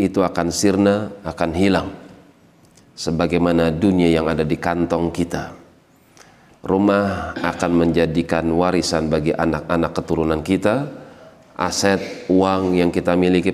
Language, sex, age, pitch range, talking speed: Indonesian, male, 40-59, 85-100 Hz, 110 wpm